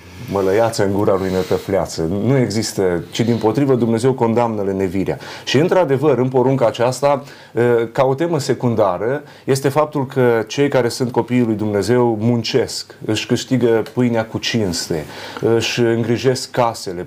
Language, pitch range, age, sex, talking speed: Romanian, 110-130 Hz, 30-49, male, 140 wpm